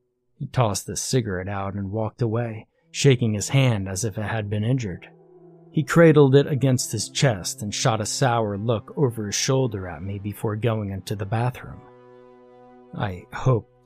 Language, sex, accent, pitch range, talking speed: English, male, American, 105-135 Hz, 175 wpm